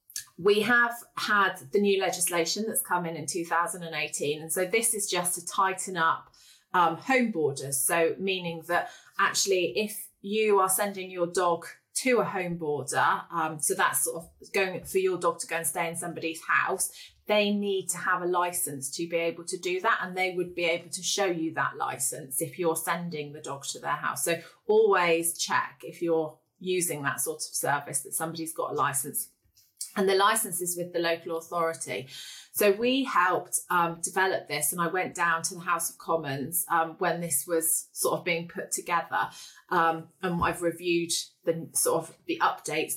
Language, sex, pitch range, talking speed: English, female, 165-195 Hz, 195 wpm